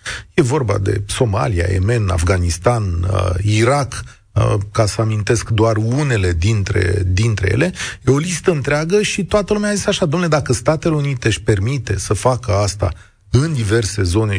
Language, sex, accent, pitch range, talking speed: Romanian, male, native, 100-145 Hz, 165 wpm